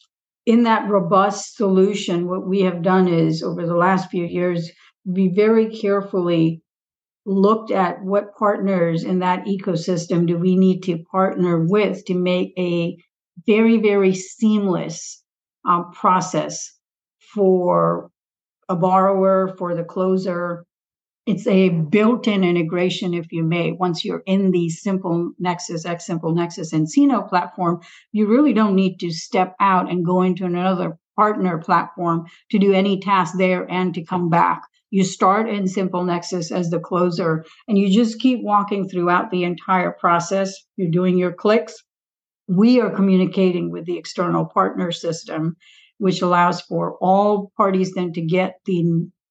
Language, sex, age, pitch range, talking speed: English, female, 50-69, 175-195 Hz, 150 wpm